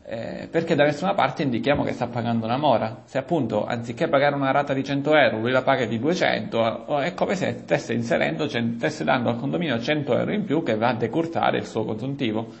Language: Italian